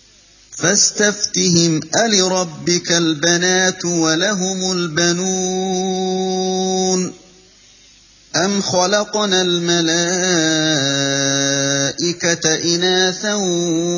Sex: male